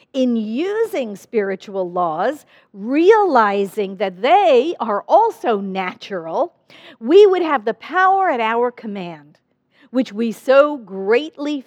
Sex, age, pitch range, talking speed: female, 50-69, 215-290 Hz, 115 wpm